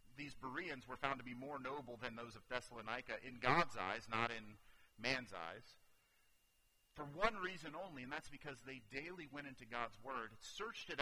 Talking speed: 185 wpm